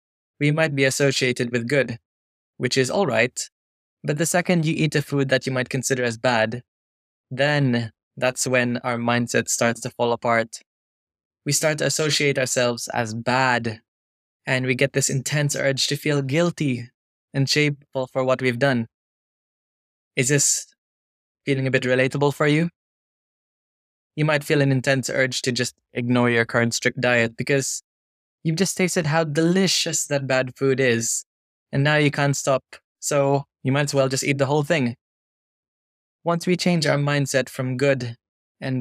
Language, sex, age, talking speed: Italian, male, 20-39, 165 wpm